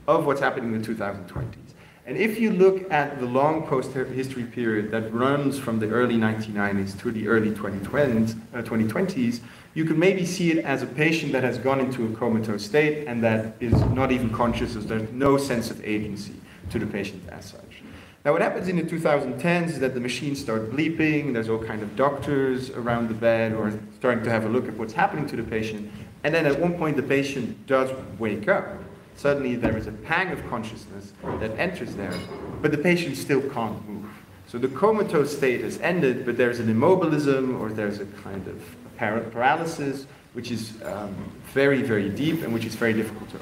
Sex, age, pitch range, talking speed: male, 30-49, 110-145 Hz, 200 wpm